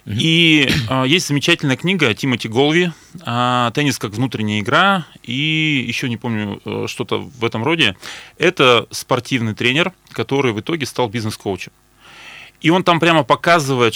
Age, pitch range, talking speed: 30-49, 115-140 Hz, 135 wpm